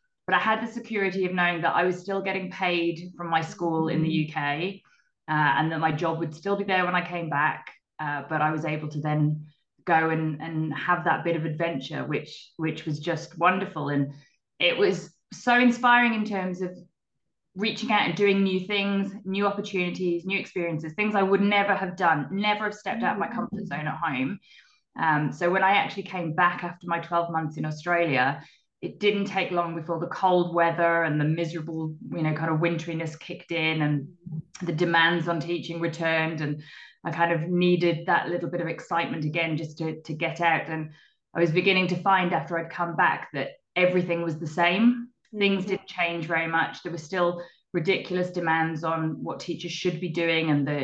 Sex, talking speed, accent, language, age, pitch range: female, 205 wpm, British, English, 20-39, 160-185 Hz